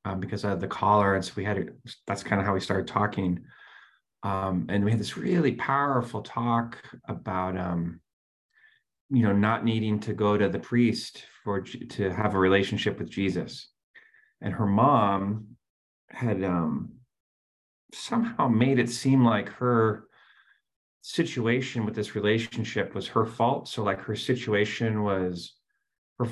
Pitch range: 95-120 Hz